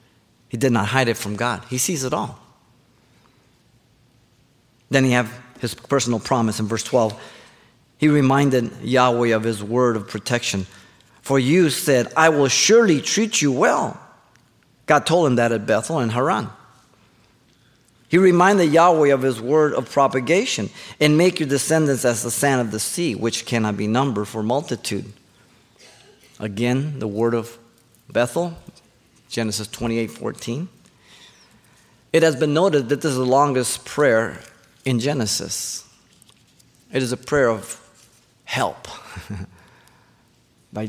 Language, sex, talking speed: English, male, 140 wpm